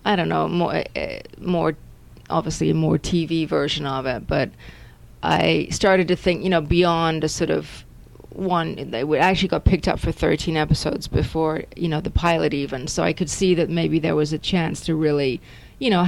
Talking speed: 195 wpm